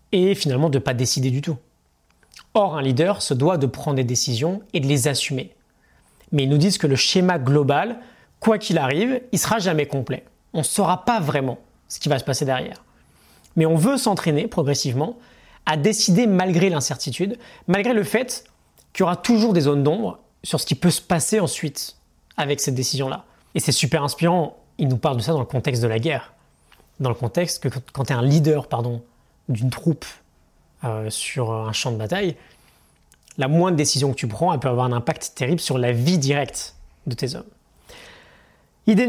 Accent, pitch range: French, 130-185 Hz